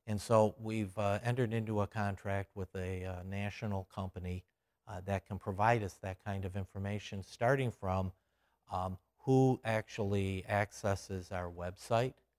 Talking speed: 145 wpm